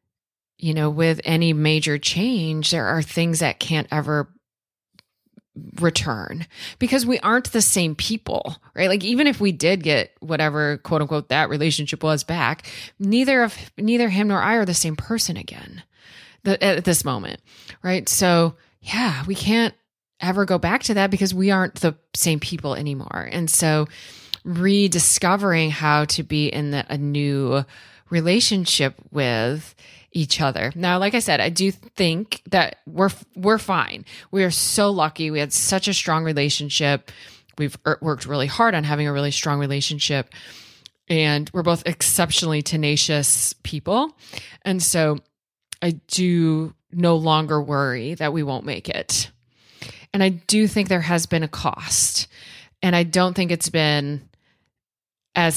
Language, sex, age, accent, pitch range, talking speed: English, female, 20-39, American, 145-185 Hz, 155 wpm